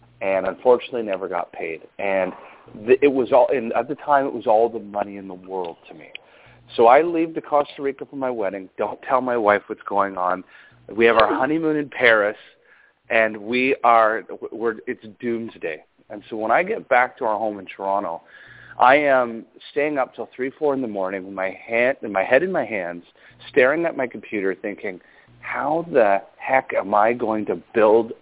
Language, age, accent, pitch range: English, 40-59, American, 105-145 Hz